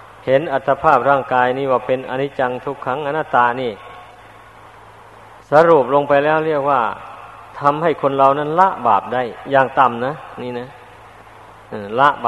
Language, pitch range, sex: Thai, 120-150 Hz, male